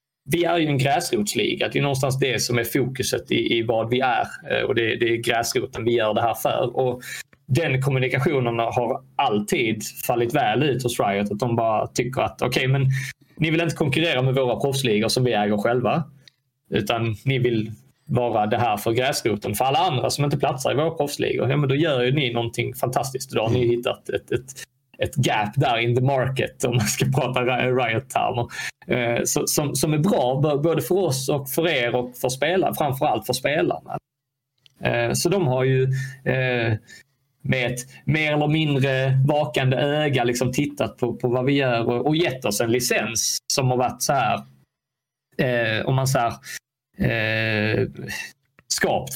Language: English